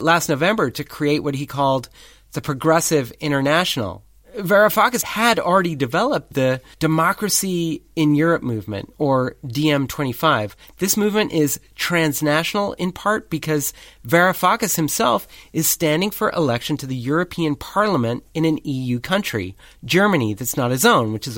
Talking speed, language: 140 wpm, English